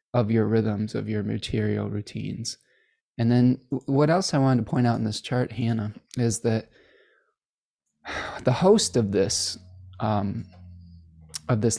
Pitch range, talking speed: 110-135 Hz, 135 wpm